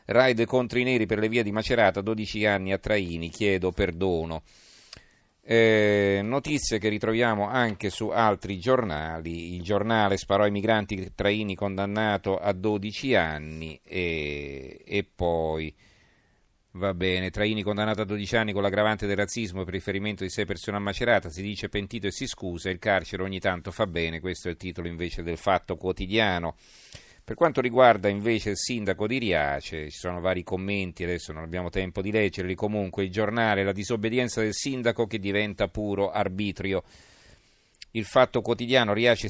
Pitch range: 95-110 Hz